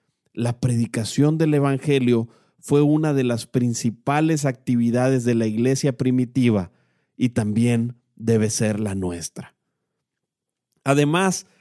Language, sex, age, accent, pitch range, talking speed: Spanish, male, 40-59, Mexican, 125-175 Hz, 110 wpm